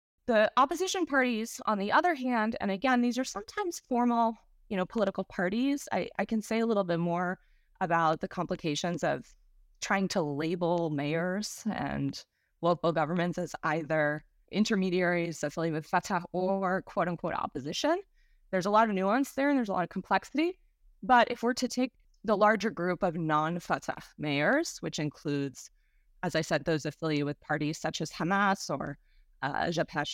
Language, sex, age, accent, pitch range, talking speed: English, female, 20-39, American, 165-225 Hz, 165 wpm